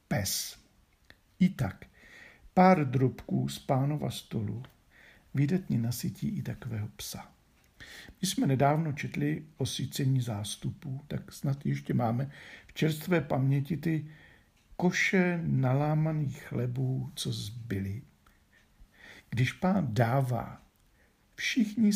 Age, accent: 60-79, native